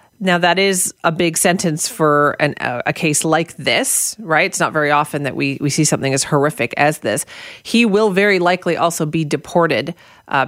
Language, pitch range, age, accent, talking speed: English, 150-180 Hz, 40-59, American, 190 wpm